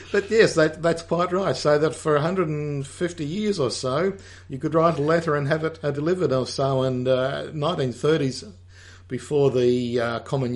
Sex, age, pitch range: male, 50-69, 125-155 Hz